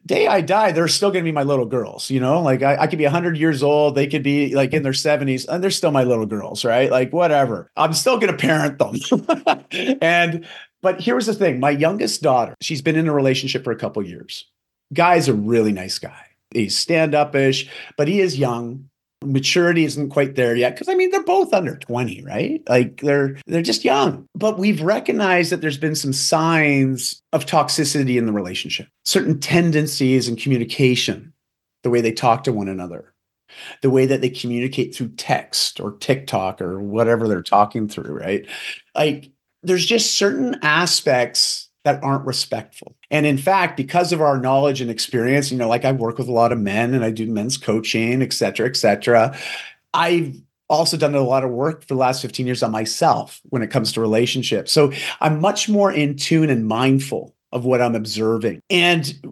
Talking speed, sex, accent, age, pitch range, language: 200 wpm, male, American, 40-59, 125-160 Hz, English